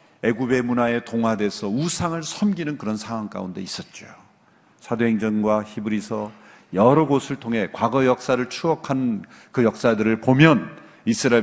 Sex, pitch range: male, 120-165 Hz